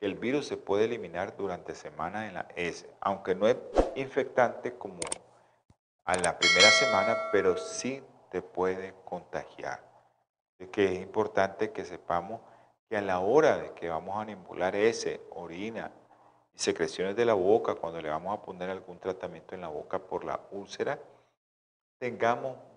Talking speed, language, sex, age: 155 wpm, Spanish, male, 40-59